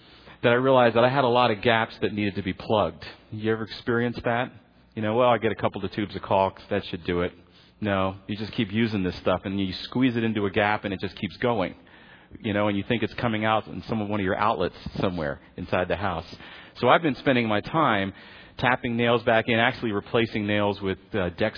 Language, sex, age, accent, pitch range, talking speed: English, male, 40-59, American, 100-130 Hz, 245 wpm